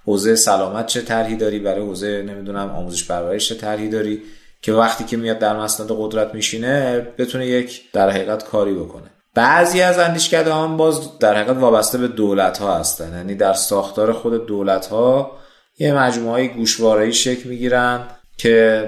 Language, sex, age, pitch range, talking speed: Persian, male, 30-49, 100-125 Hz, 160 wpm